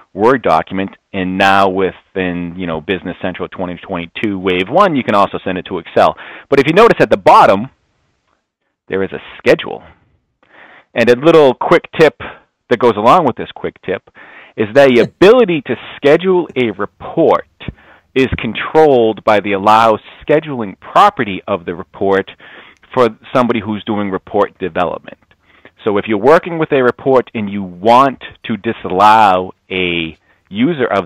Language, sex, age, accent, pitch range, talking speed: English, male, 30-49, American, 90-120 Hz, 155 wpm